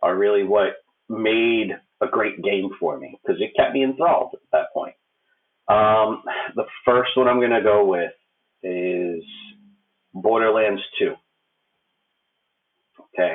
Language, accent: English, American